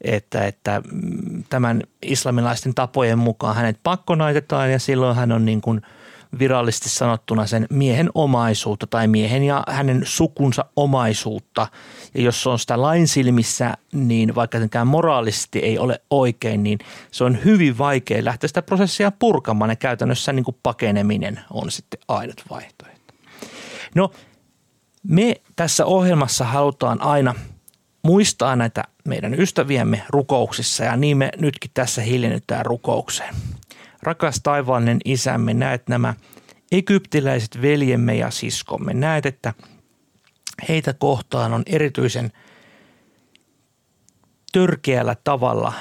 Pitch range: 115-150 Hz